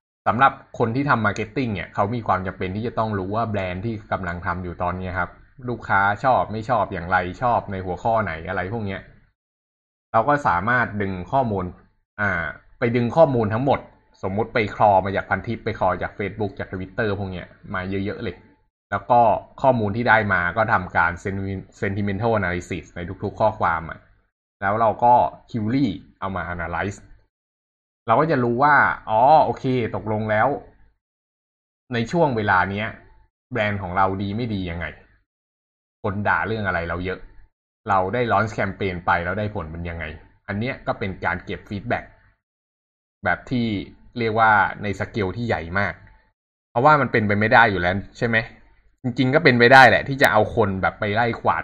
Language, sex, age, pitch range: Thai, male, 20-39, 95-115 Hz